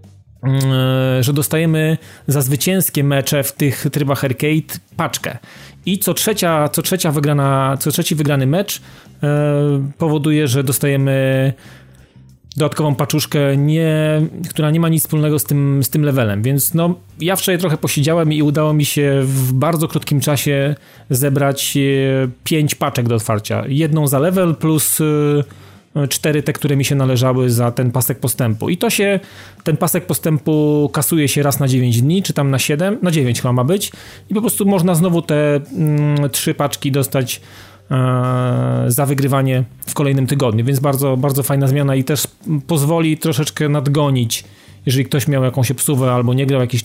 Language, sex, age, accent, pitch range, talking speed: Polish, male, 30-49, native, 130-155 Hz, 160 wpm